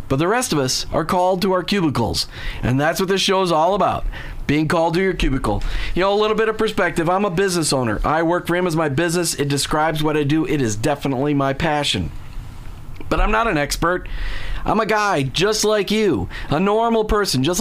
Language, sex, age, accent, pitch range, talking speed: English, male, 40-59, American, 135-195 Hz, 225 wpm